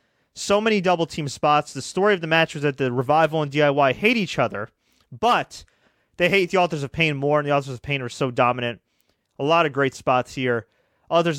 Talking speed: 215 wpm